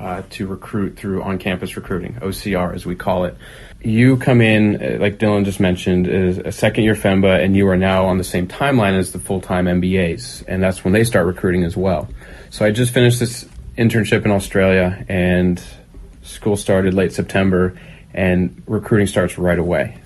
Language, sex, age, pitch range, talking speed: English, male, 30-49, 90-110 Hz, 175 wpm